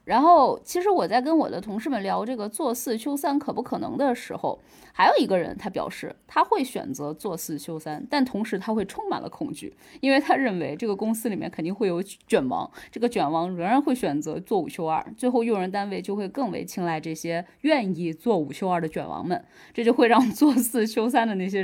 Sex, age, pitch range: female, 20-39, 180-255 Hz